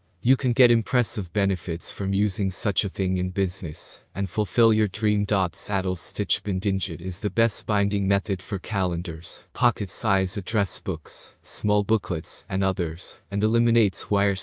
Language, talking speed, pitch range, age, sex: English, 155 wpm, 90-105 Hz, 30-49, male